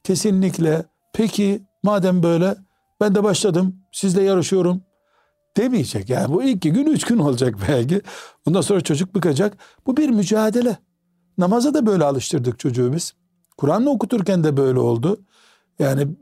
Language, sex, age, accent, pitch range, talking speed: Turkish, male, 60-79, native, 145-195 Hz, 135 wpm